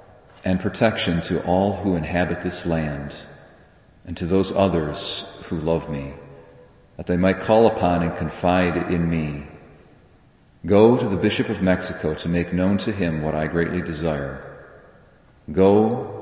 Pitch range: 85-110 Hz